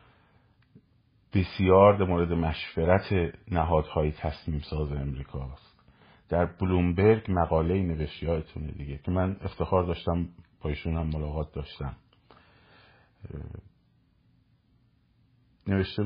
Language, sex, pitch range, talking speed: Persian, male, 80-110 Hz, 80 wpm